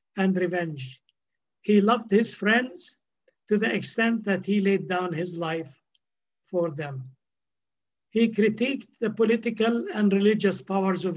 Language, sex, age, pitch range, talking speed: English, male, 60-79, 180-225 Hz, 135 wpm